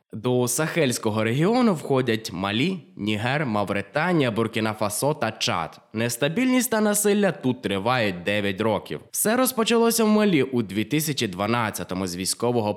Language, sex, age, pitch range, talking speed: Ukrainian, male, 20-39, 105-155 Hz, 120 wpm